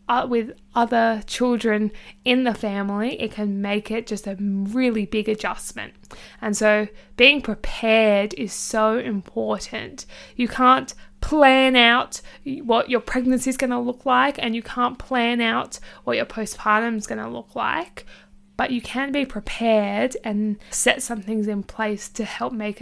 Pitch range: 215-250 Hz